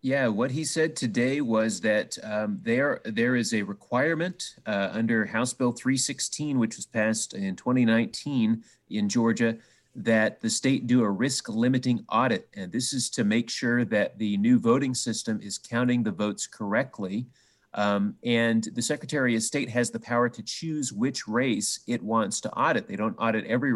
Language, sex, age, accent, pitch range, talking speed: English, male, 30-49, American, 105-130 Hz, 175 wpm